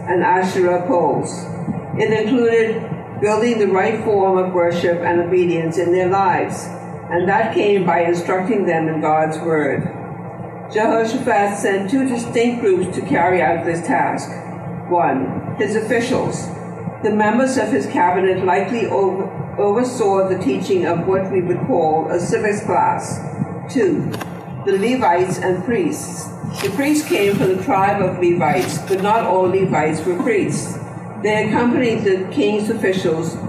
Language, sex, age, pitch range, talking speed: English, female, 60-79, 170-215 Hz, 140 wpm